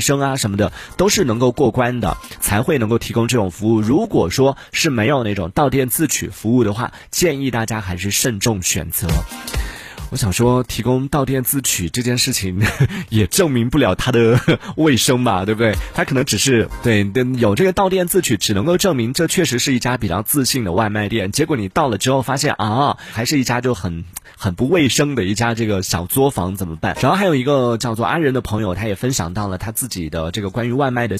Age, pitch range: 30-49, 105-135 Hz